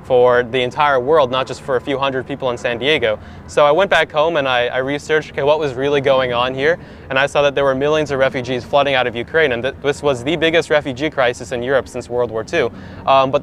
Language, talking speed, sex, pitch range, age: English, 260 wpm, male, 120-140 Hz, 20-39